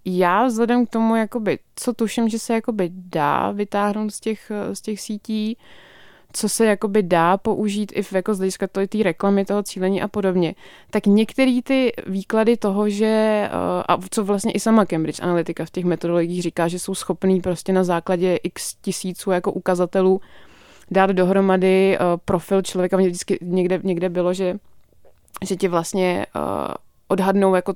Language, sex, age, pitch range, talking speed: Czech, female, 20-39, 180-210 Hz, 160 wpm